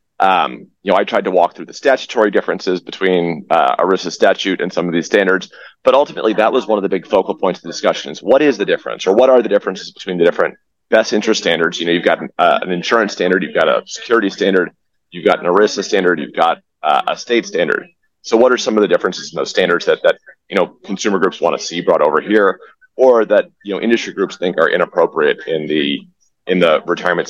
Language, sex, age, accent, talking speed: English, male, 30-49, American, 235 wpm